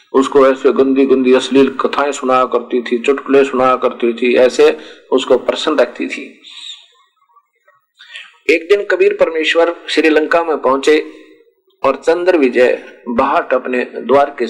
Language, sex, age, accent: Hindi, male, 50-69, native